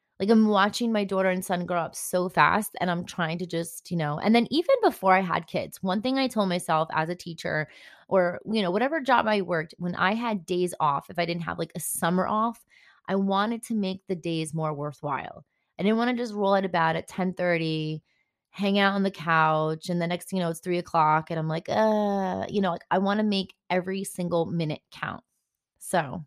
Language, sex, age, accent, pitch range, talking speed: English, female, 20-39, American, 170-205 Hz, 230 wpm